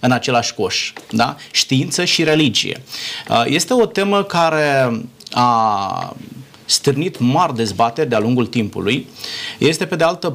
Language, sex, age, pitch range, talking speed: Romanian, male, 30-49, 120-150 Hz, 130 wpm